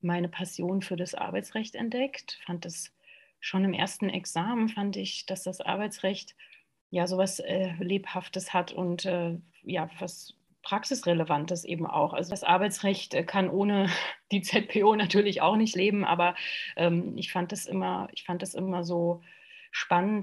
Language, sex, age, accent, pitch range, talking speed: German, female, 30-49, German, 175-210 Hz, 155 wpm